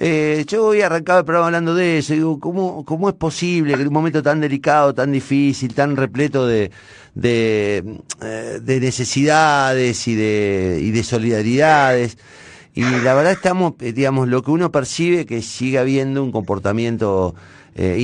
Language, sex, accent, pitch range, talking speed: Spanish, male, Argentinian, 110-155 Hz, 165 wpm